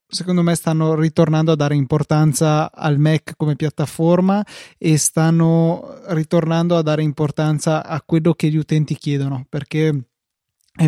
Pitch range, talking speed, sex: 150-165 Hz, 140 wpm, male